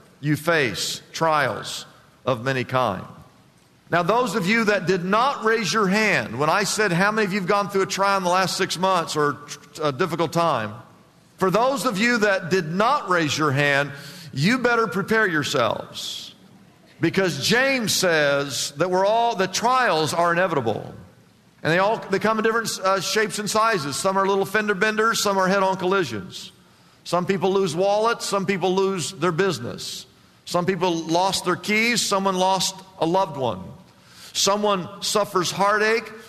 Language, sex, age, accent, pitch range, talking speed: English, male, 50-69, American, 170-205 Hz, 170 wpm